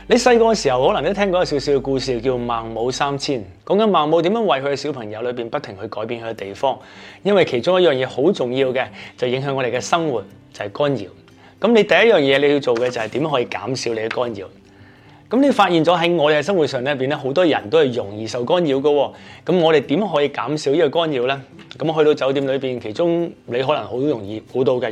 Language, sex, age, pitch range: English, male, 30-49, 115-150 Hz